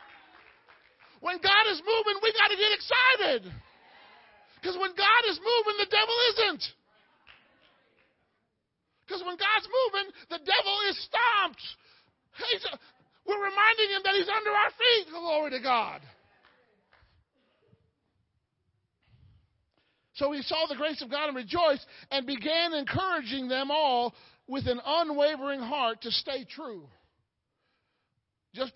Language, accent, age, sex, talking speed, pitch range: English, American, 40-59, male, 120 wpm, 225-330 Hz